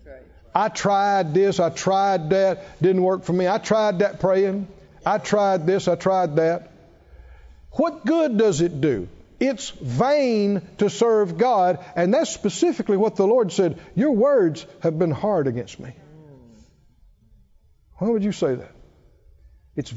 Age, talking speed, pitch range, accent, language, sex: 60-79, 150 wpm, 175-270 Hz, American, English, male